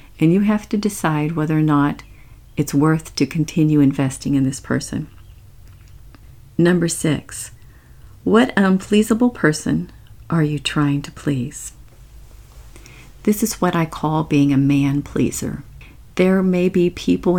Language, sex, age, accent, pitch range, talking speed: English, female, 50-69, American, 130-165 Hz, 135 wpm